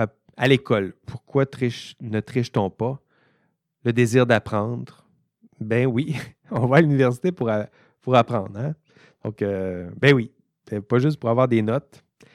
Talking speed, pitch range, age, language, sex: 145 wpm, 105-125 Hz, 30-49, French, male